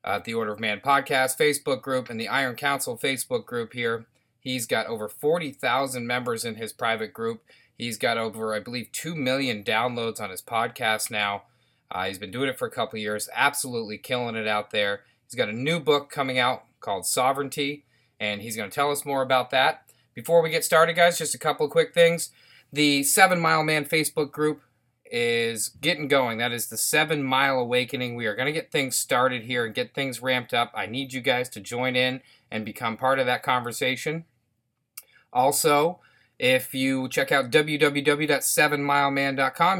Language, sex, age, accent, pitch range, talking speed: English, male, 30-49, American, 115-140 Hz, 190 wpm